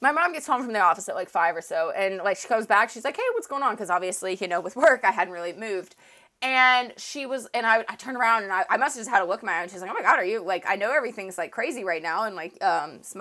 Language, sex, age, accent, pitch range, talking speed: English, female, 20-39, American, 195-280 Hz, 330 wpm